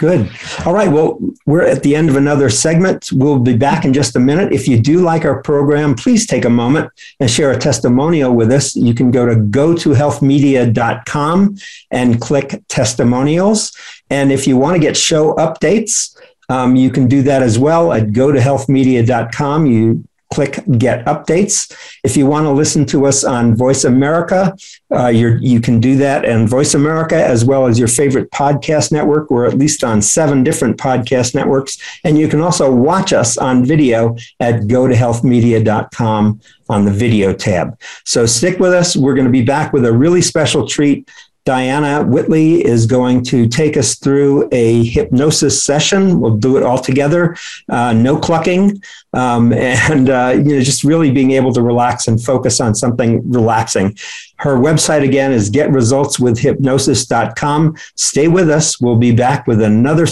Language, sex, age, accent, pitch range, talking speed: English, male, 50-69, American, 120-150 Hz, 175 wpm